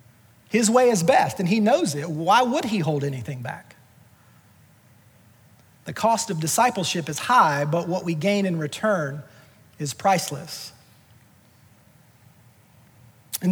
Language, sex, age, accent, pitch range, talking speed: English, male, 40-59, American, 145-195 Hz, 130 wpm